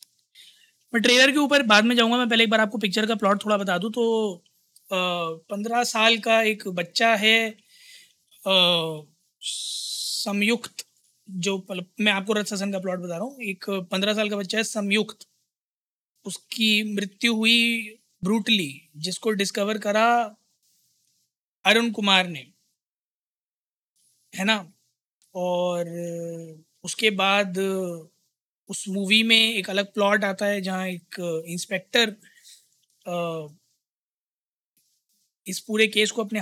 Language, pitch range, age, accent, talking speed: Hindi, 190-225 Hz, 20-39, native, 120 wpm